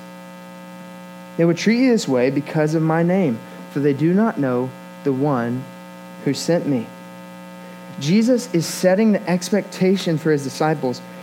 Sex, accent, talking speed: male, American, 150 wpm